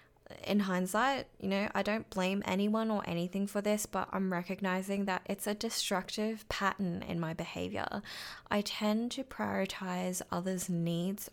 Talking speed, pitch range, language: 155 wpm, 185-220 Hz, English